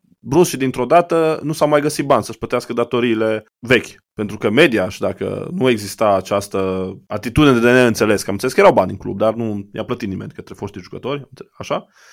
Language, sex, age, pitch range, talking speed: Romanian, male, 20-39, 100-140 Hz, 205 wpm